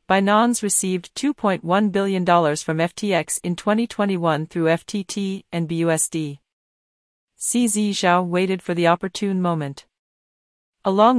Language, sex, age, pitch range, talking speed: Romanian, female, 40-59, 165-200 Hz, 115 wpm